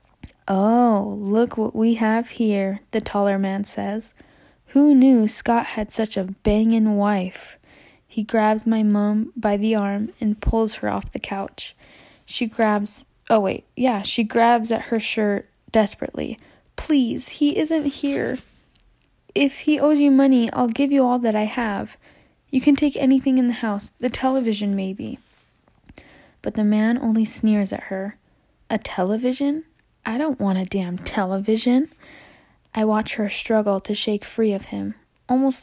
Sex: female